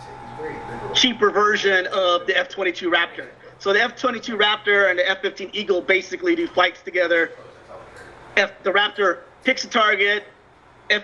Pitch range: 175-210 Hz